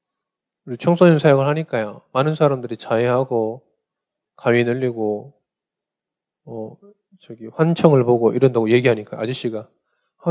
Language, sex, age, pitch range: Korean, male, 20-39, 130-195 Hz